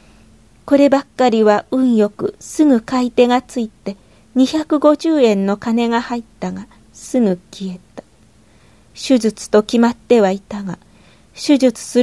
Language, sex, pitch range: Japanese, female, 210-255 Hz